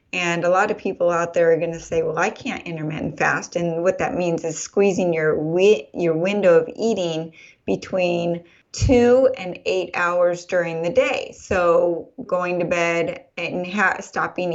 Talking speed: 175 wpm